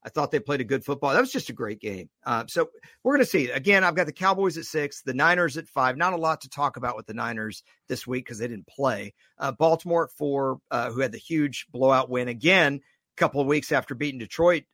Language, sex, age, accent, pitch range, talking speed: English, male, 50-69, American, 130-175 Hz, 260 wpm